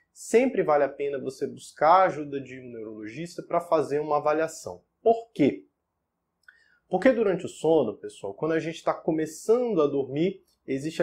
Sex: male